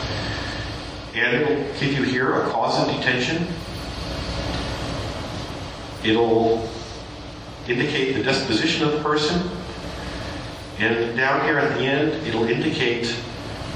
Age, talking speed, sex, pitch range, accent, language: 50-69, 110 wpm, male, 100-135 Hz, American, English